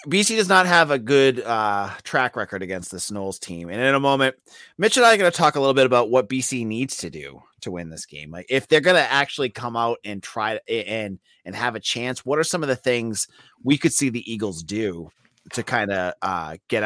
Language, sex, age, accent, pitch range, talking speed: English, male, 30-49, American, 105-140 Hz, 245 wpm